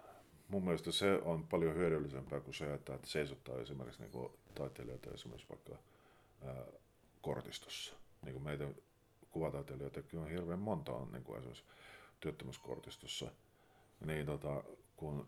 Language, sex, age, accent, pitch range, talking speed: Finnish, male, 50-69, native, 70-80 Hz, 100 wpm